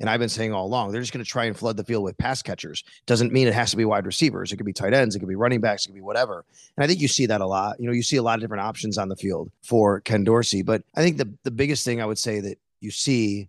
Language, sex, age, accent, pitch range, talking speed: English, male, 30-49, American, 110-135 Hz, 340 wpm